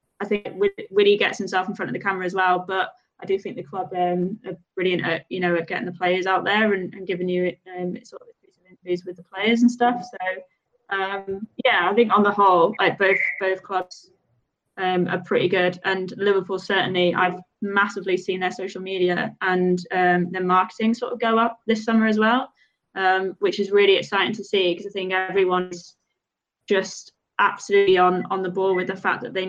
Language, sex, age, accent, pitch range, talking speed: English, female, 20-39, British, 180-205 Hz, 210 wpm